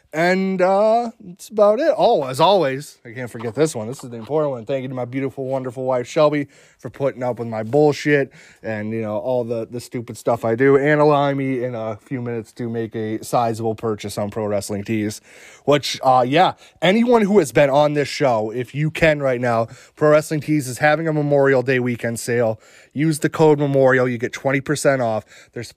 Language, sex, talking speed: English, male, 215 wpm